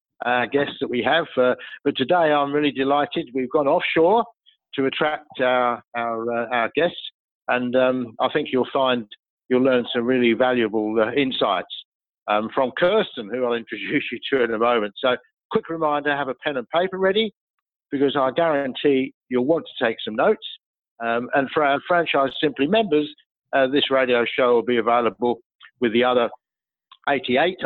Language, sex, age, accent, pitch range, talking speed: English, male, 50-69, British, 120-150 Hz, 180 wpm